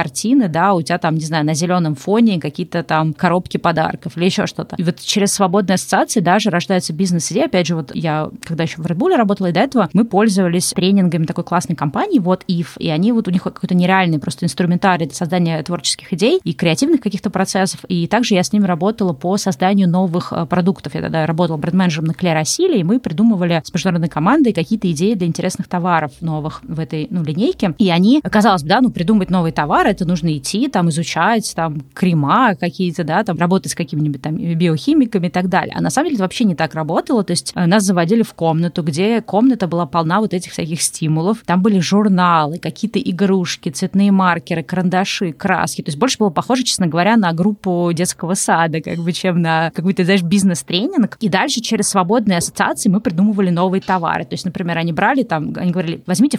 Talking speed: 200 wpm